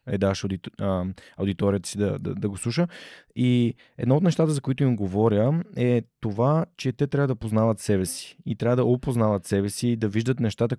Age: 20-39